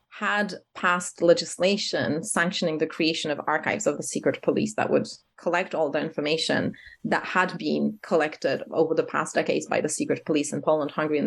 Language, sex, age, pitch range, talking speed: English, female, 30-49, 150-180 Hz, 180 wpm